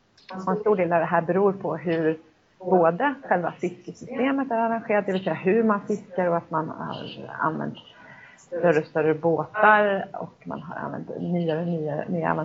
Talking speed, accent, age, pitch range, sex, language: 175 wpm, native, 30-49, 170-205 Hz, female, Swedish